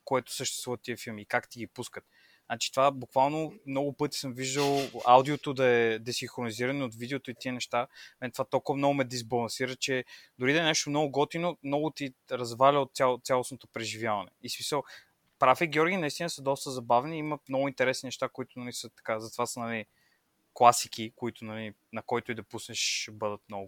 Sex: male